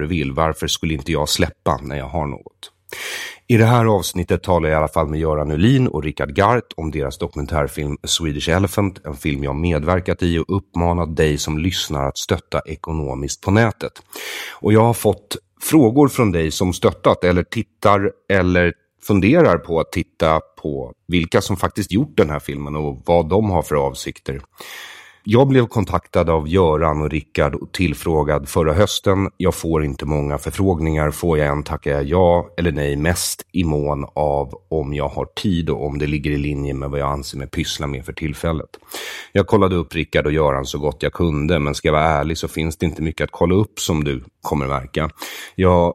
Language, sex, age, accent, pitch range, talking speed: English, male, 30-49, Swedish, 75-90 Hz, 195 wpm